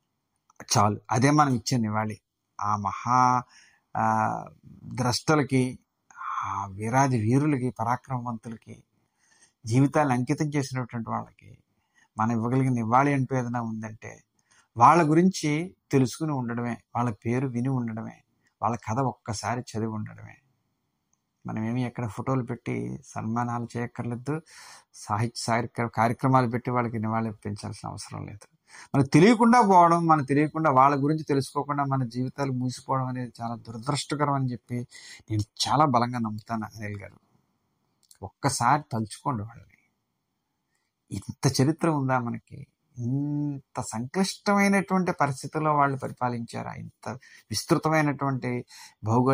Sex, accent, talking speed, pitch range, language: male, Indian, 85 wpm, 115-140 Hz, English